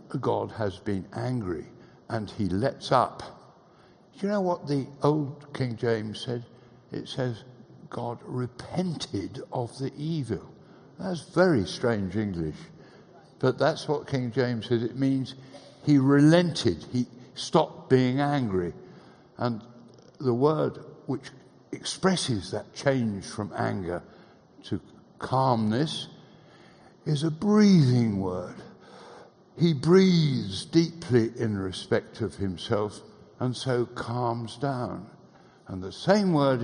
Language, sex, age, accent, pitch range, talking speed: English, male, 60-79, British, 120-170 Hz, 120 wpm